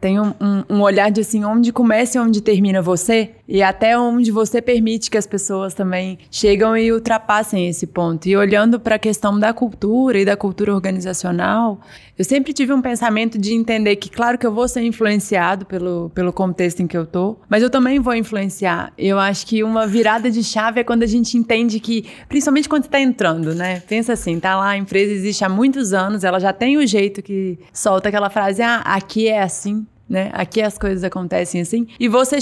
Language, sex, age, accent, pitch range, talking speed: Portuguese, female, 20-39, Brazilian, 195-230 Hz, 210 wpm